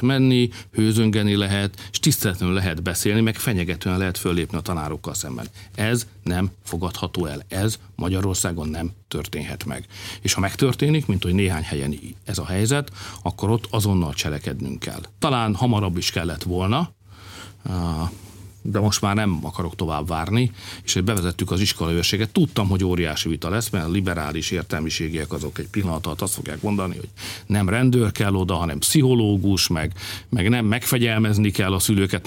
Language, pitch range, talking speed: Hungarian, 95-115 Hz, 160 wpm